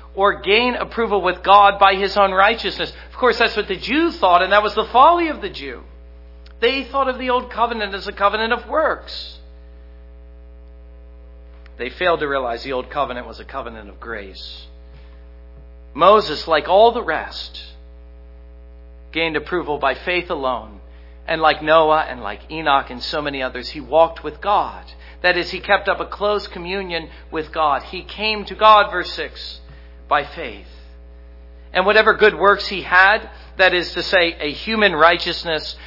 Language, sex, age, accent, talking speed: English, male, 50-69, American, 170 wpm